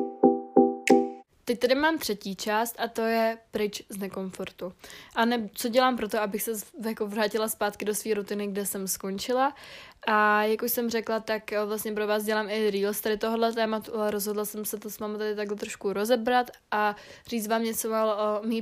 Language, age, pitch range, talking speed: Czech, 20-39, 205-225 Hz, 190 wpm